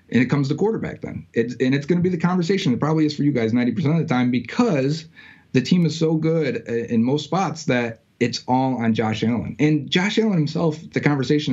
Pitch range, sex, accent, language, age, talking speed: 115-155 Hz, male, American, English, 30-49, 230 wpm